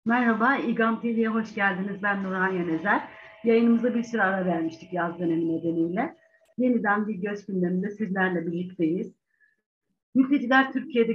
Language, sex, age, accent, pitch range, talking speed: Turkish, female, 60-79, native, 180-235 Hz, 130 wpm